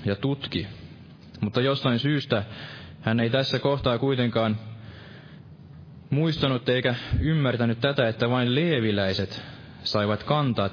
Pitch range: 105-125 Hz